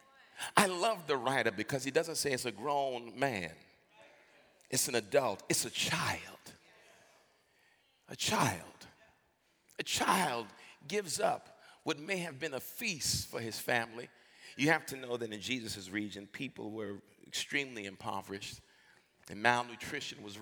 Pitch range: 105-155 Hz